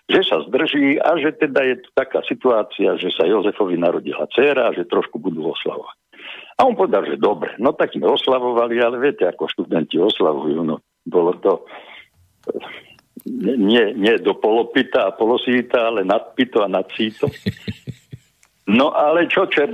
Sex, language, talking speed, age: male, Slovak, 155 wpm, 60-79